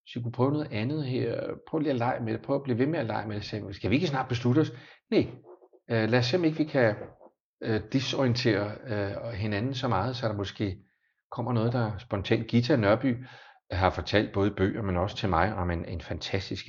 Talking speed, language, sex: 210 wpm, Danish, male